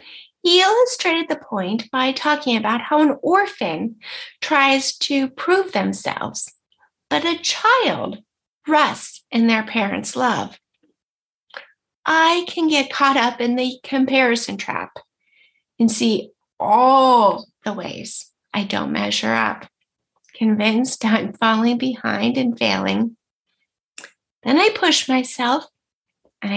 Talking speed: 115 wpm